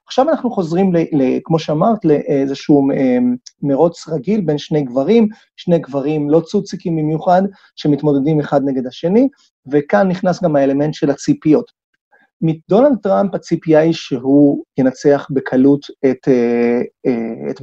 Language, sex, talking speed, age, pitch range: Hebrew, male, 125 wpm, 30-49, 145-210 Hz